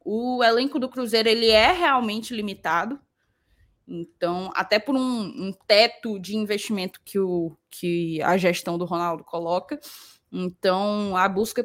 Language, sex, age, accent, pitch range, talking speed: Portuguese, female, 10-29, Brazilian, 185-235 Hz, 135 wpm